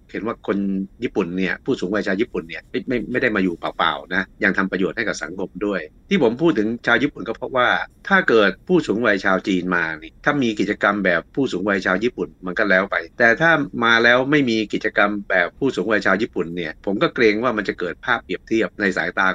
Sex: male